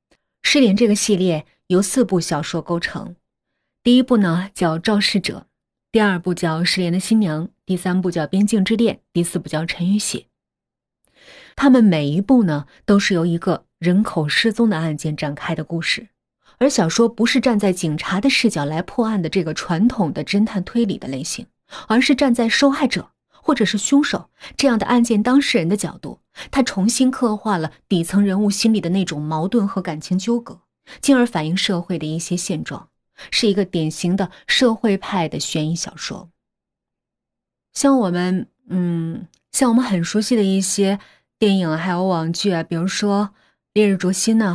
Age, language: 30-49, Chinese